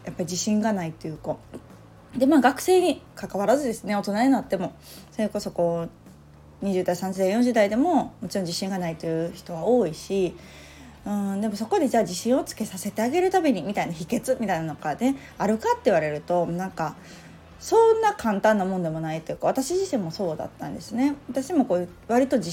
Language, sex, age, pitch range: Japanese, female, 20-39, 175-255 Hz